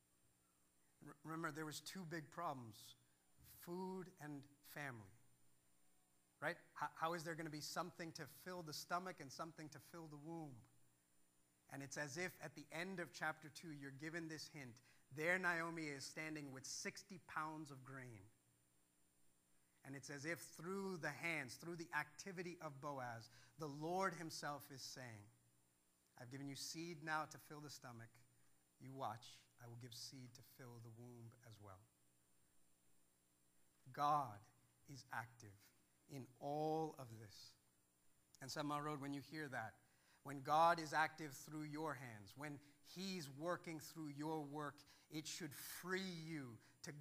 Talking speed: 155 wpm